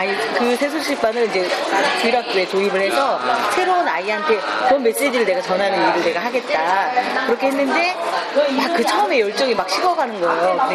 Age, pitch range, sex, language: 40-59, 200-305 Hz, female, Korean